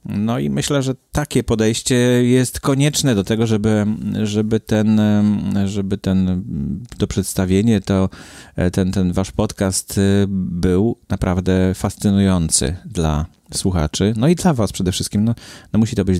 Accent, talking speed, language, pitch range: Polish, 140 wpm, English, 95-135 Hz